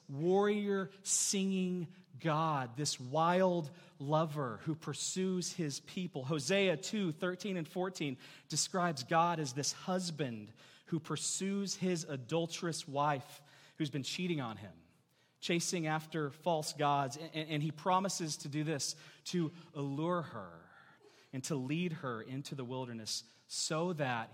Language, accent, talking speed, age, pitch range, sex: English, American, 130 wpm, 30-49, 120-160 Hz, male